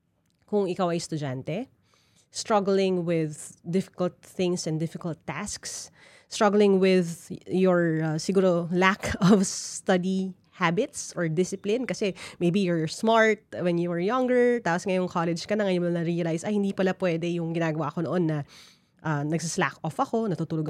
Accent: Filipino